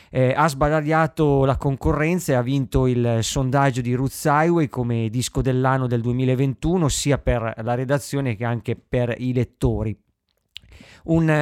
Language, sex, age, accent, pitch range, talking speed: Italian, male, 20-39, native, 125-145 Hz, 145 wpm